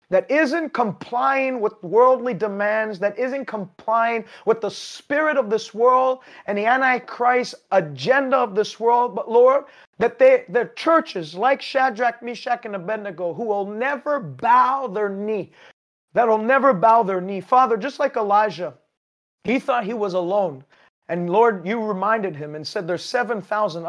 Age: 30-49